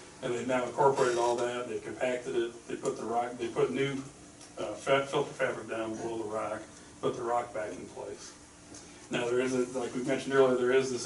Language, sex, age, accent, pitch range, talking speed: English, male, 40-59, American, 110-130 Hz, 210 wpm